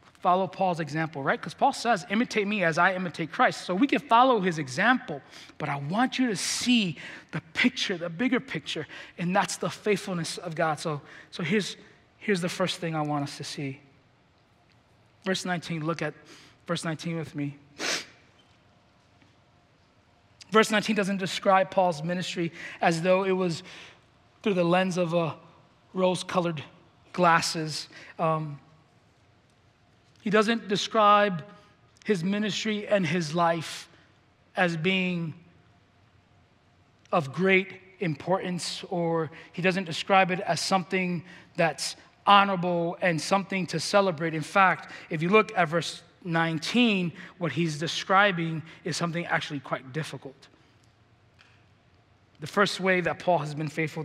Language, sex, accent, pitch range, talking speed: English, male, American, 150-190 Hz, 140 wpm